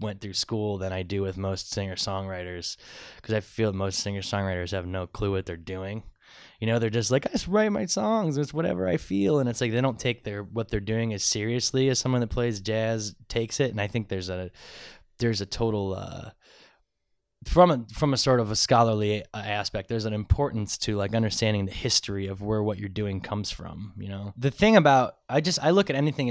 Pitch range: 105-135 Hz